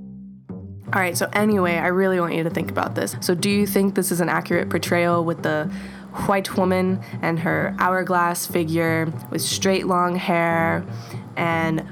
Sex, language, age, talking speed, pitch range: female, English, 20-39, 170 wpm, 165-200 Hz